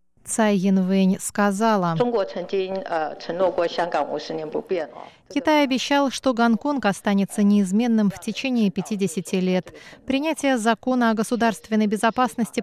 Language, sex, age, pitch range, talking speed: Russian, female, 20-39, 190-245 Hz, 80 wpm